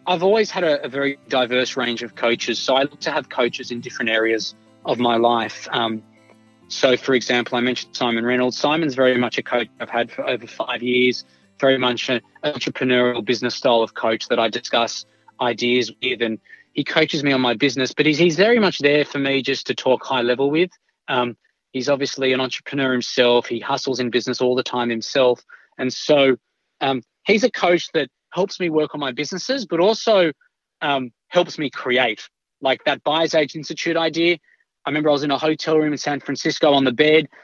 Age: 20-39